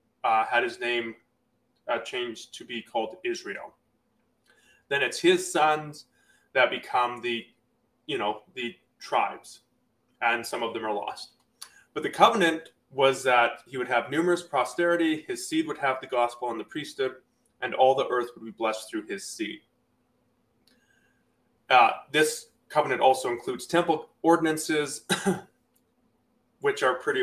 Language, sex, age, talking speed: English, male, 20-39, 145 wpm